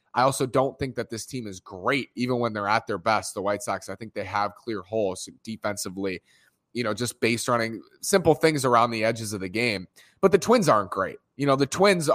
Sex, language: male, English